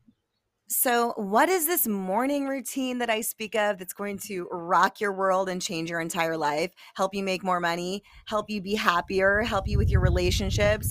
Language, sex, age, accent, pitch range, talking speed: English, female, 30-49, American, 185-245 Hz, 195 wpm